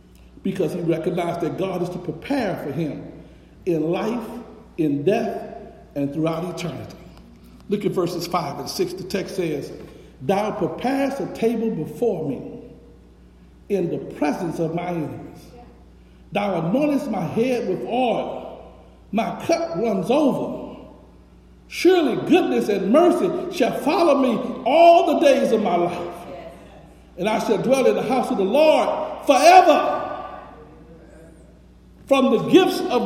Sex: male